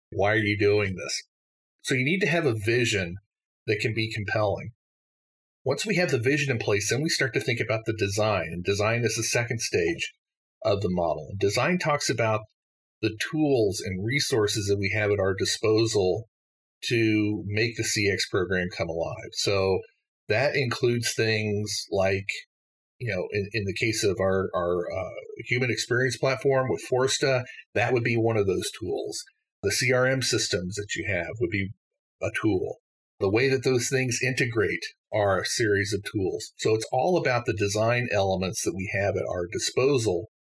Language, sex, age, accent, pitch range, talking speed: English, male, 40-59, American, 100-125 Hz, 180 wpm